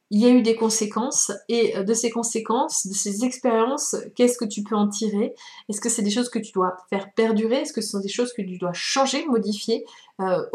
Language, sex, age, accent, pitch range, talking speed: French, female, 20-39, French, 210-245 Hz, 235 wpm